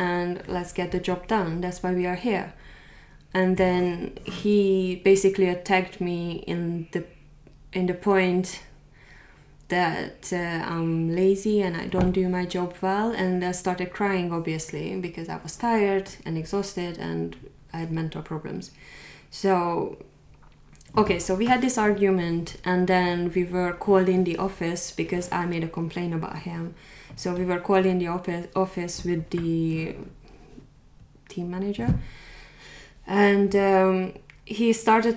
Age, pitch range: 20-39, 170-195 Hz